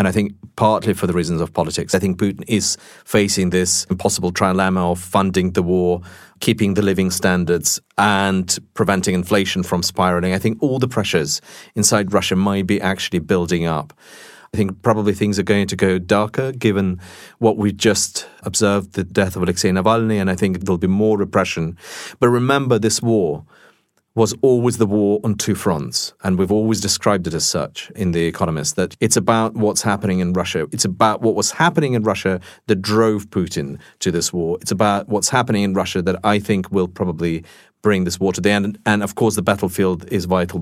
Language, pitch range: English, 95-110 Hz